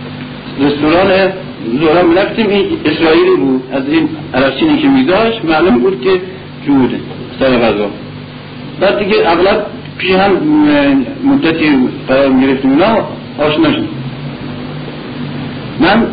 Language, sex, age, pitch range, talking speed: Persian, male, 60-79, 125-160 Hz, 105 wpm